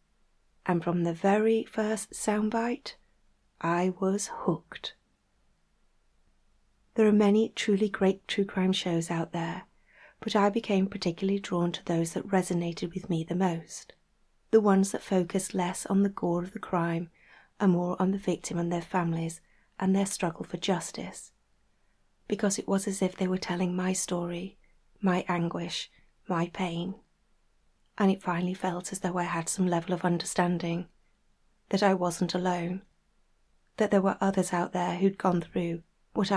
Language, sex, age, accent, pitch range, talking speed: English, female, 40-59, British, 175-195 Hz, 160 wpm